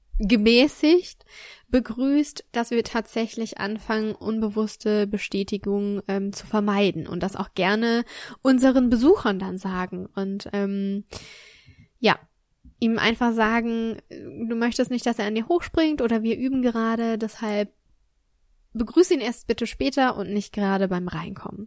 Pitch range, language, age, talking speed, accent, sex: 200-235 Hz, German, 10-29, 135 wpm, German, female